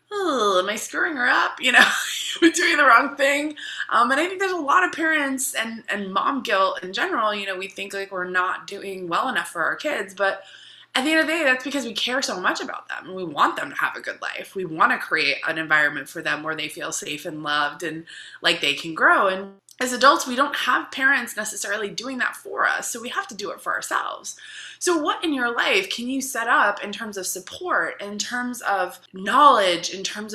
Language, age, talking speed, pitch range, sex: English, 20-39, 240 wpm, 175-260 Hz, female